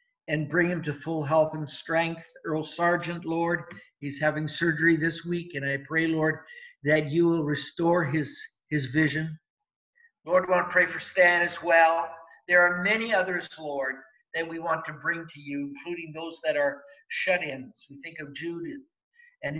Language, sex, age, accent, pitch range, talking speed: English, male, 50-69, American, 140-175 Hz, 180 wpm